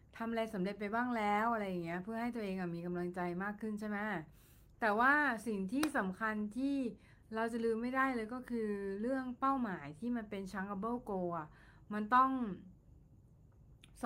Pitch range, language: 175-230 Hz, Thai